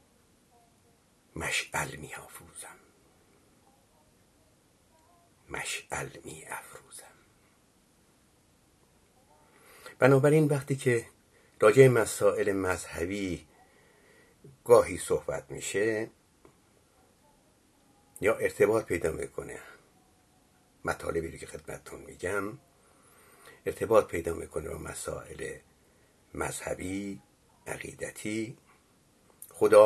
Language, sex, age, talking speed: Persian, male, 60-79, 60 wpm